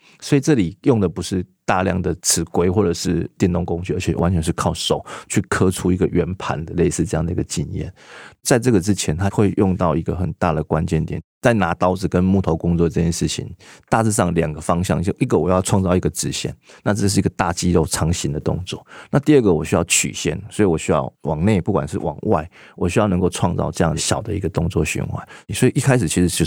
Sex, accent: male, native